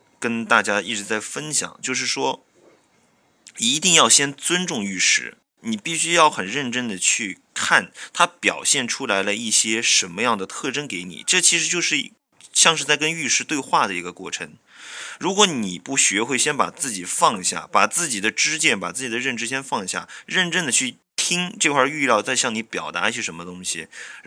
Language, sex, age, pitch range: Chinese, male, 20-39, 95-150 Hz